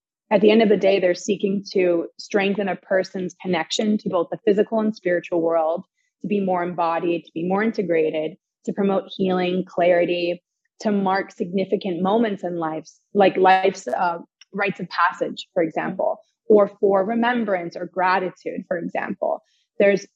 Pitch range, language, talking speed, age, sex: 180-210 Hz, English, 160 wpm, 20-39, female